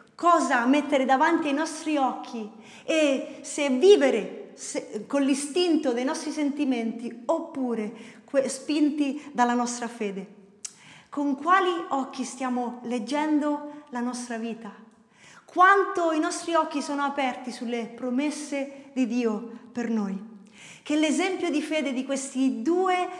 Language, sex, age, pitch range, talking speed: Italian, female, 30-49, 240-310 Hz, 120 wpm